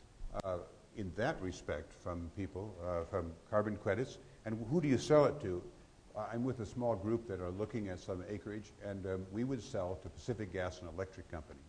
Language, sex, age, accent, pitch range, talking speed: English, male, 60-79, American, 85-105 Hz, 200 wpm